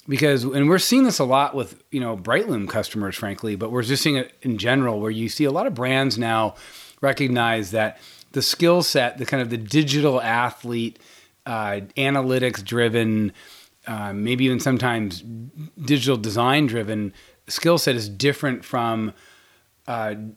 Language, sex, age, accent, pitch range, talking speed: English, male, 30-49, American, 110-135 Hz, 160 wpm